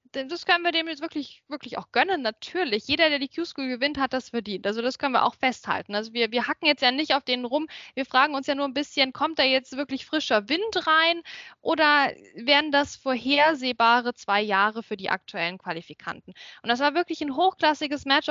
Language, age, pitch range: German, 10-29, 245-300 Hz